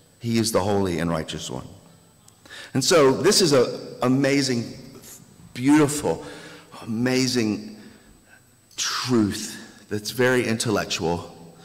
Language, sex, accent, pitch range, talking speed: English, male, American, 105-140 Hz, 100 wpm